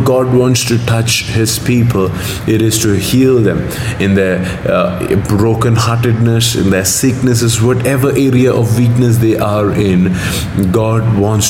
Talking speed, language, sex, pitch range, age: 145 wpm, English, male, 100-120 Hz, 20-39